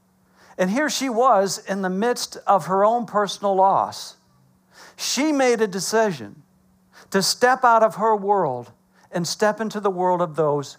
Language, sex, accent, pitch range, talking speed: English, male, American, 155-200 Hz, 160 wpm